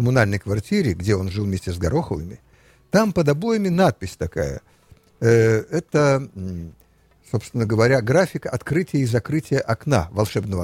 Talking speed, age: 125 wpm, 60-79